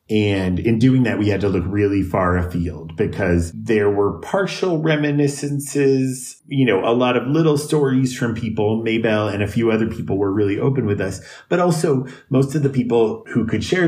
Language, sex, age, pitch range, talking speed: English, male, 30-49, 95-130 Hz, 195 wpm